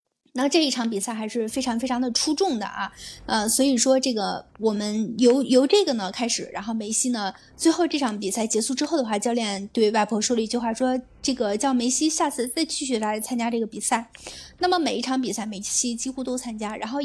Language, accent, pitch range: Chinese, native, 220-265 Hz